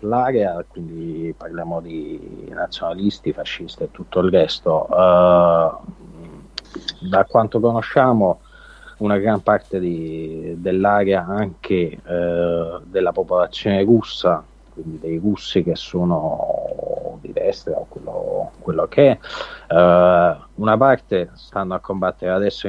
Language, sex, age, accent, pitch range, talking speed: Italian, male, 40-59, native, 85-100 Hz, 115 wpm